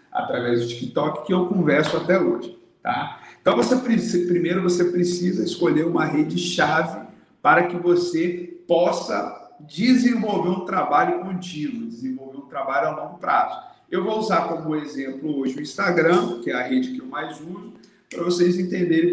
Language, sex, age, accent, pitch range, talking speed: Portuguese, male, 40-59, Brazilian, 140-195 Hz, 155 wpm